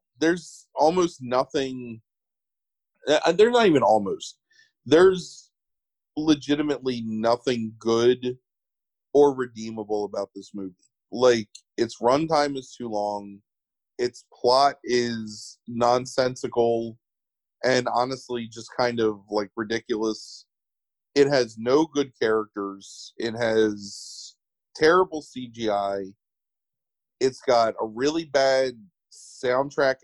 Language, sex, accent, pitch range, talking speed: English, male, American, 115-145 Hz, 95 wpm